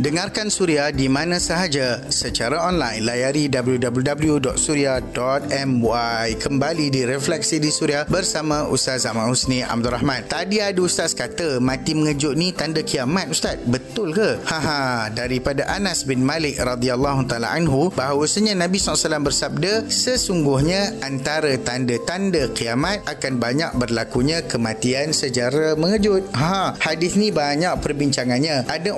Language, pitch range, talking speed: Malay, 130-170 Hz, 125 wpm